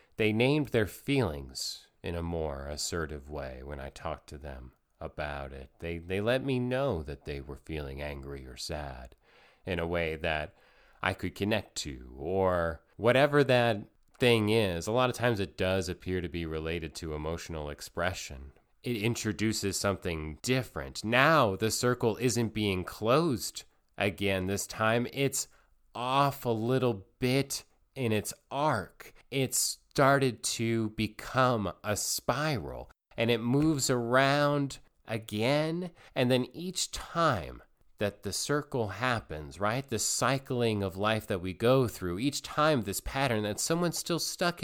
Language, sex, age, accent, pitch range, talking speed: English, male, 30-49, American, 85-130 Hz, 150 wpm